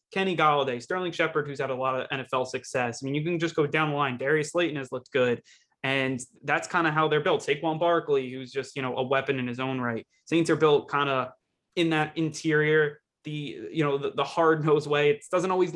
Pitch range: 130-155 Hz